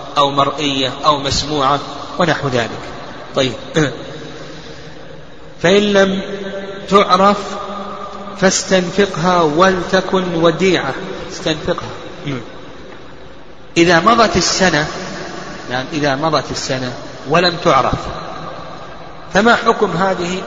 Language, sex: Arabic, male